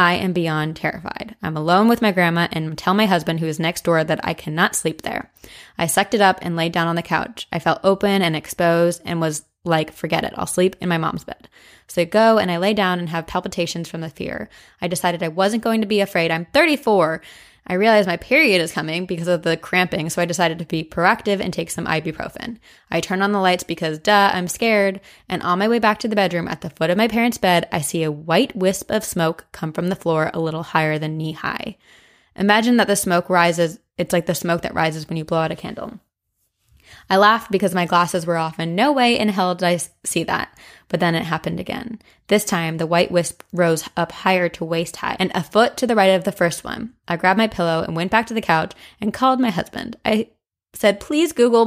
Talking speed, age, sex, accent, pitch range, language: 240 wpm, 20-39, female, American, 165-205 Hz, English